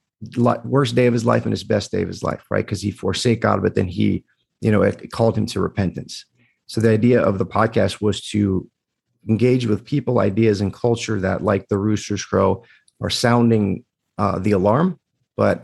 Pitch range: 95-115 Hz